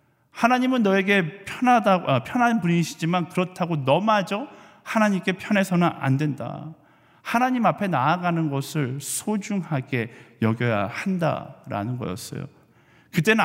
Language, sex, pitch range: Korean, male, 145-200 Hz